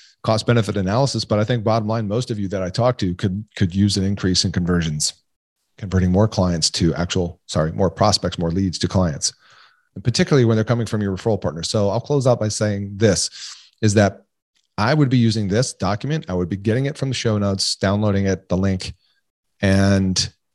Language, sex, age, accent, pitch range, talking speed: English, male, 40-59, American, 95-125 Hz, 205 wpm